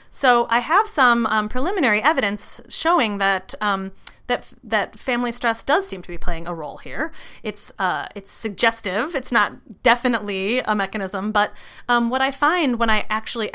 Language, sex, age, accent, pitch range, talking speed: English, female, 30-49, American, 185-245 Hz, 175 wpm